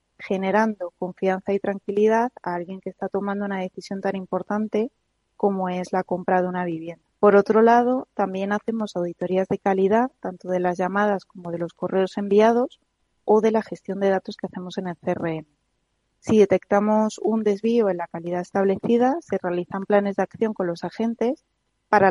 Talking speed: 175 wpm